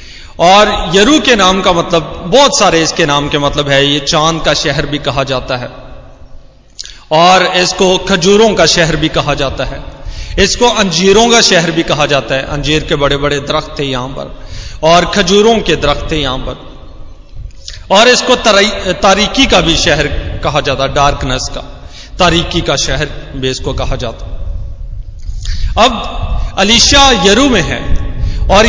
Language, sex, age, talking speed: Hindi, male, 30-49, 160 wpm